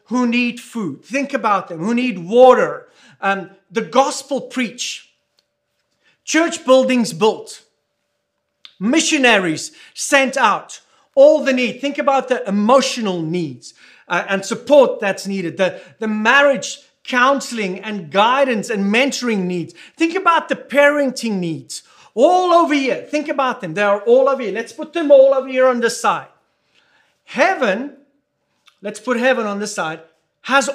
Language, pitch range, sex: English, 215-290 Hz, male